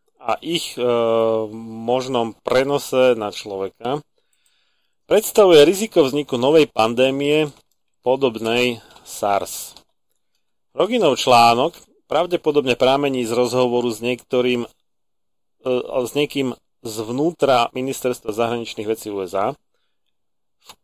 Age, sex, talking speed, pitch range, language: 30-49, male, 85 wpm, 115-140 Hz, Slovak